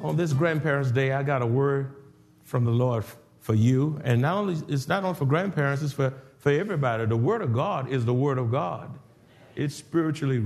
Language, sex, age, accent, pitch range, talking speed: English, male, 50-69, American, 120-150 Hz, 195 wpm